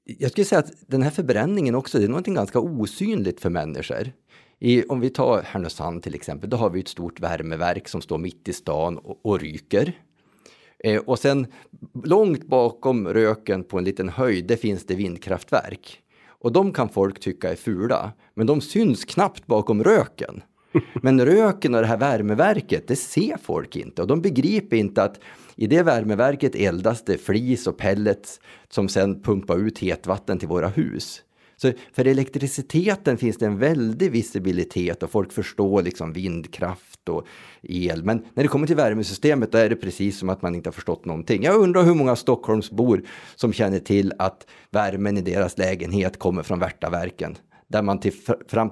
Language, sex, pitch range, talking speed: Swedish, male, 95-130 Hz, 175 wpm